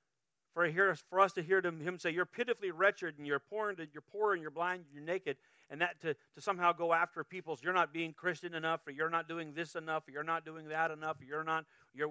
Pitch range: 150-190 Hz